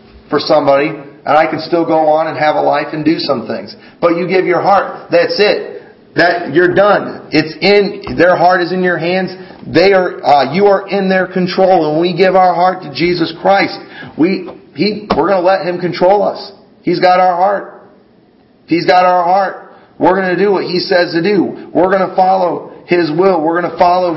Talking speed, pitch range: 215 wpm, 145-185 Hz